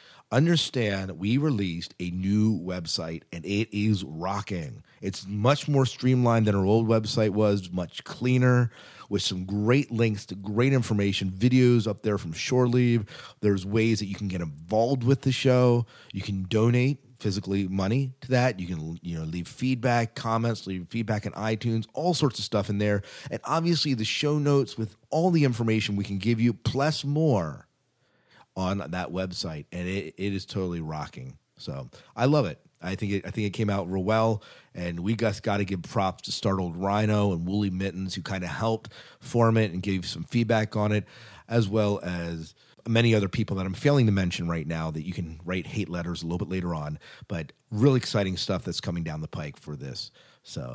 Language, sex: English, male